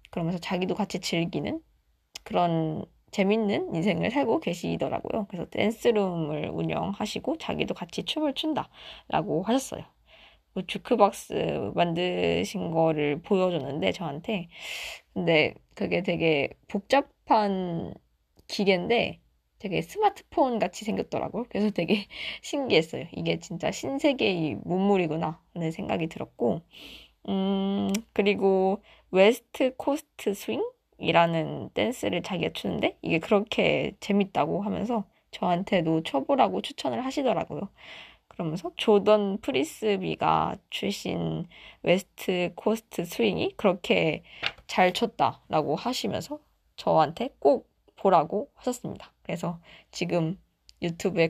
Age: 20-39